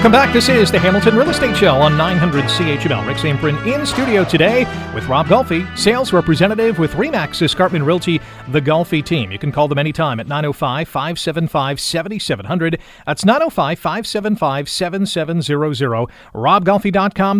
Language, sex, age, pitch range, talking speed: English, male, 40-59, 140-200 Hz, 135 wpm